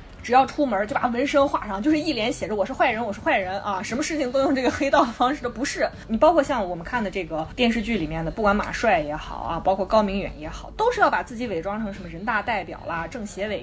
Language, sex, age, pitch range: Chinese, female, 20-39, 200-305 Hz